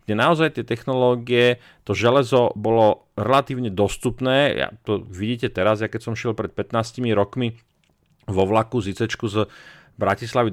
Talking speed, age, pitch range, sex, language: 135 wpm, 40-59, 100-120 Hz, male, Slovak